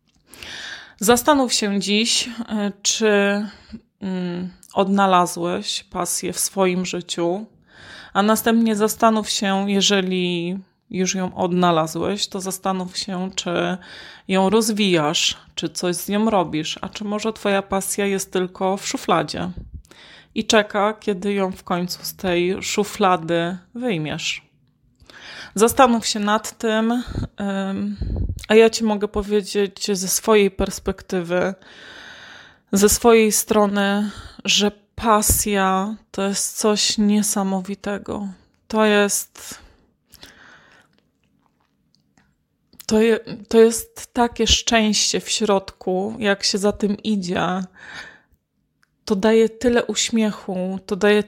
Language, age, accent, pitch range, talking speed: Polish, 20-39, native, 190-215 Hz, 100 wpm